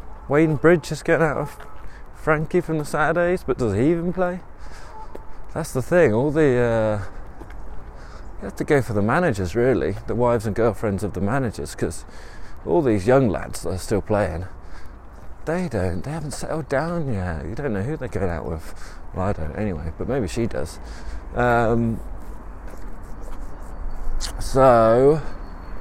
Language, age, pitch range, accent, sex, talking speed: English, 20-39, 95-135 Hz, British, male, 165 wpm